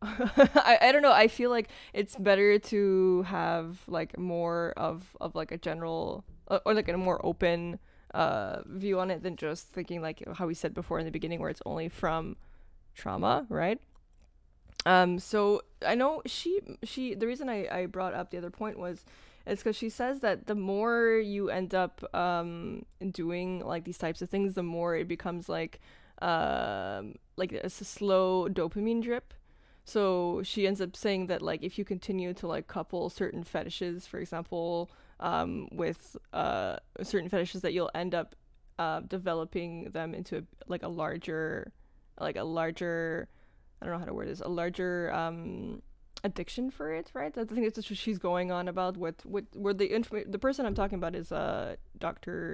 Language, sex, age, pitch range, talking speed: English, female, 10-29, 170-205 Hz, 185 wpm